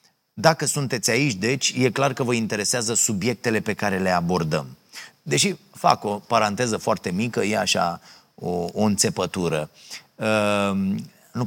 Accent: native